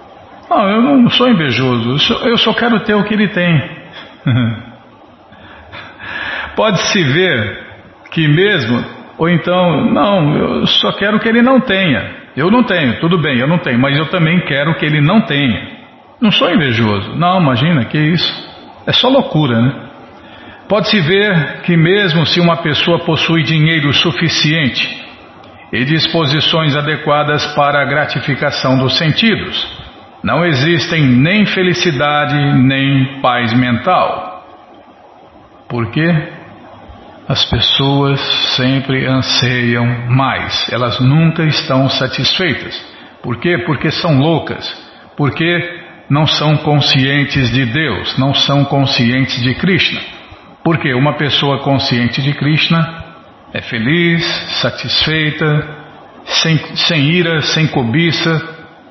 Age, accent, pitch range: 50-69, Brazilian, 135-170 Hz